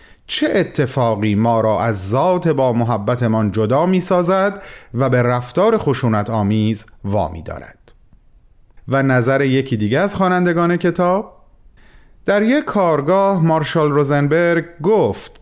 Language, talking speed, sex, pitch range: Persian, 115 wpm, male, 120-175 Hz